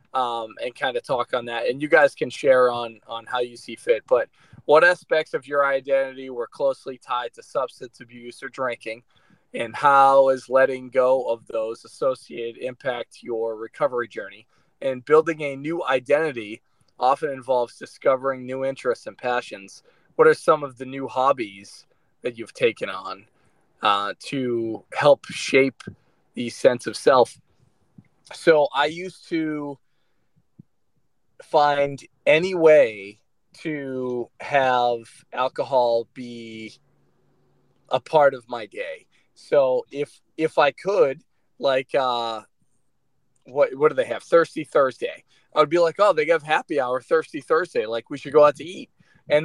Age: 20-39